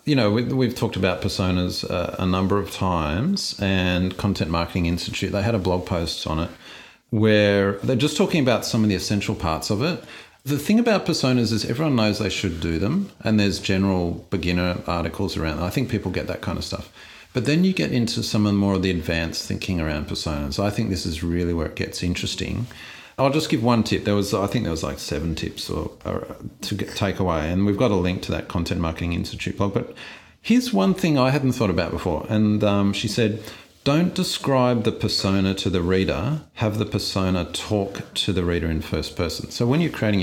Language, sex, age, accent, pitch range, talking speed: English, male, 40-59, Australian, 90-115 Hz, 220 wpm